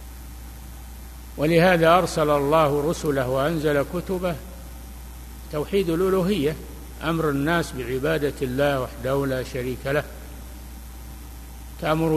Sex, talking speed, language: male, 85 wpm, Arabic